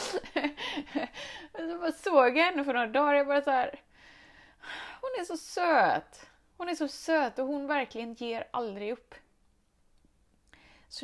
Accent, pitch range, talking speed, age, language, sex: native, 220-295 Hz, 140 wpm, 20-39, Swedish, female